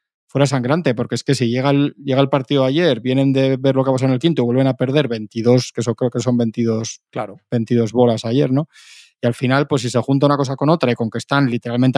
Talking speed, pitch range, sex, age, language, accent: 265 wpm, 120-140 Hz, male, 20-39, Spanish, Spanish